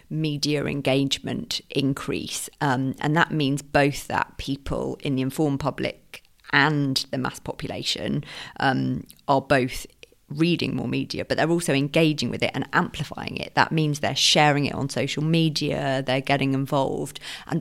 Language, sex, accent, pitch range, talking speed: Finnish, female, British, 135-165 Hz, 155 wpm